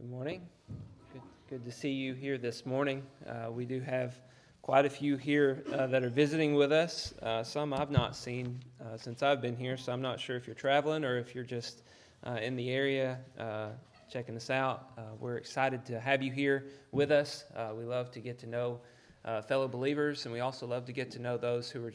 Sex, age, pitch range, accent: male, 30-49, 120-145 Hz, American